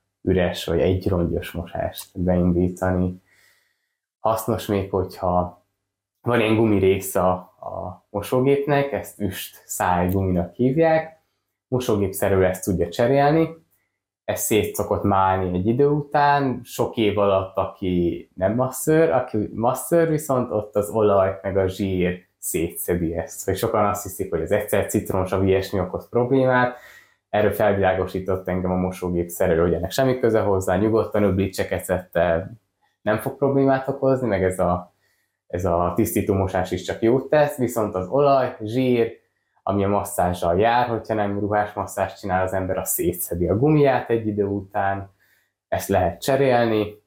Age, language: 20-39, Hungarian